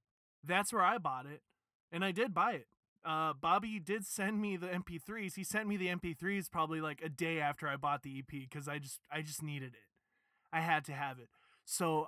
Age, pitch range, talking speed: 20-39, 150-205 Hz, 220 wpm